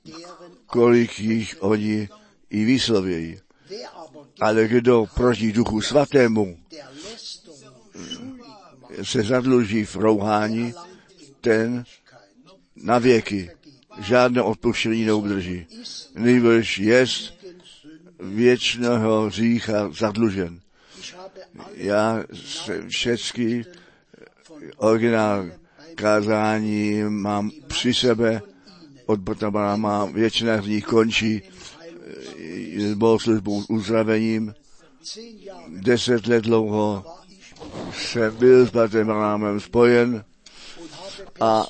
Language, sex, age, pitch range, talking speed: Czech, male, 60-79, 105-125 Hz, 70 wpm